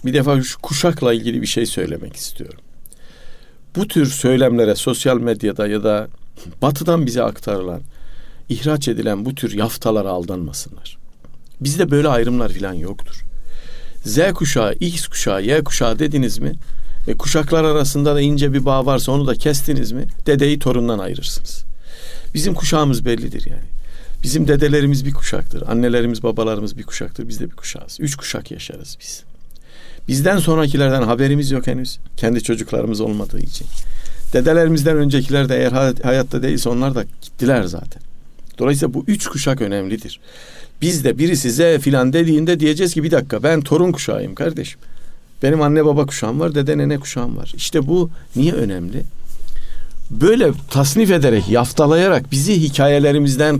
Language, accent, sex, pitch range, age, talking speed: Turkish, native, male, 120-155 Hz, 50-69, 145 wpm